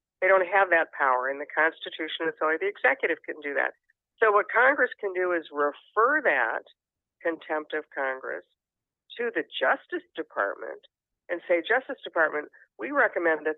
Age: 50-69